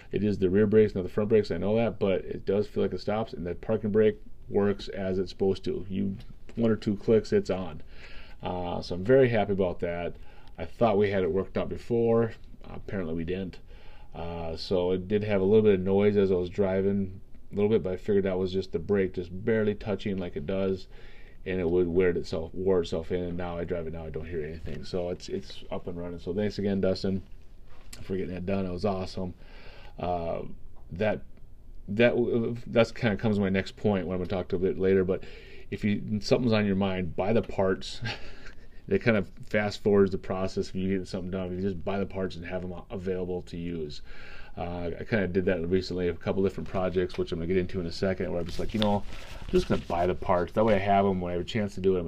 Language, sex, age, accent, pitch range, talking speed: English, male, 30-49, American, 90-100 Hz, 250 wpm